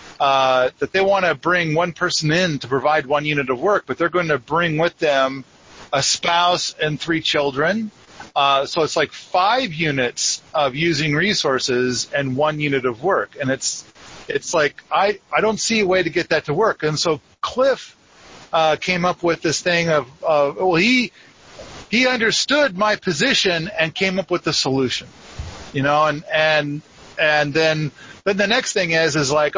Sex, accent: male, American